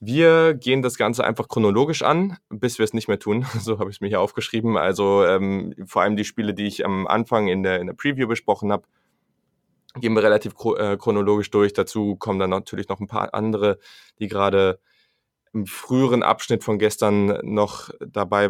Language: German